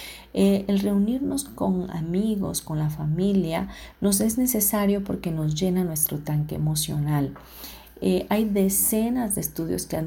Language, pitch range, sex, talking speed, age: Spanish, 155-195 Hz, female, 145 wpm, 40-59